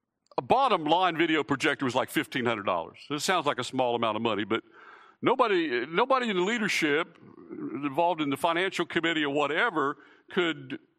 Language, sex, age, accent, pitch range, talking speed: English, male, 60-79, American, 160-230 Hz, 170 wpm